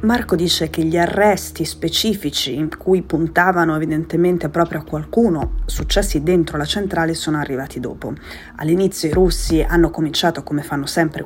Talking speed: 150 wpm